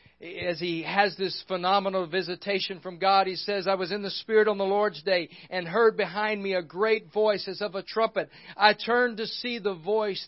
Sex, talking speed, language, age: male, 210 wpm, English, 50-69